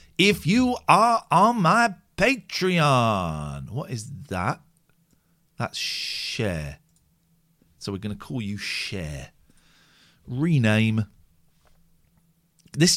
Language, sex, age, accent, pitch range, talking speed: English, male, 50-69, British, 105-170 Hz, 90 wpm